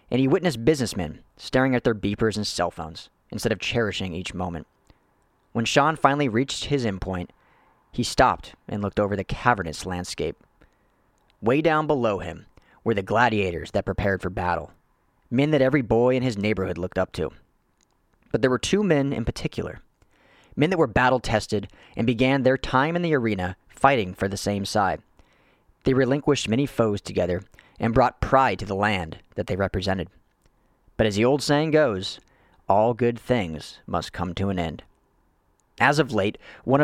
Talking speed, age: 175 wpm, 40-59